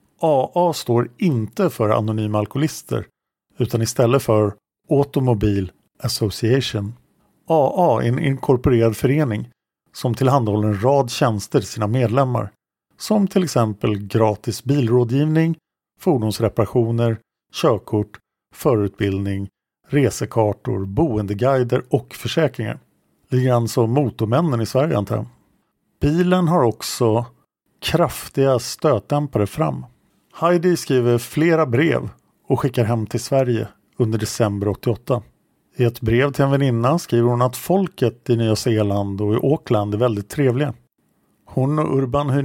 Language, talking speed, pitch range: English, 115 wpm, 110-140 Hz